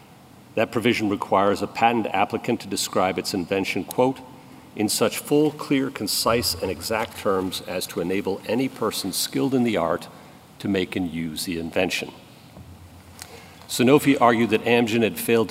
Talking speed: 155 wpm